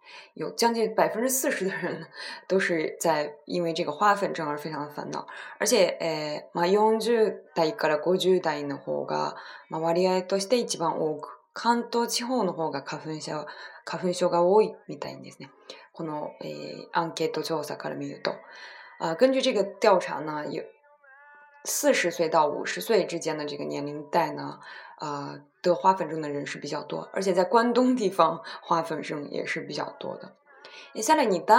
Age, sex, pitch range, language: 20-39, female, 155-220 Hz, Chinese